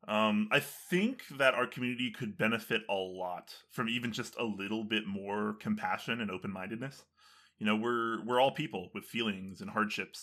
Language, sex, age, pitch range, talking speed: English, male, 20-39, 95-140 Hz, 175 wpm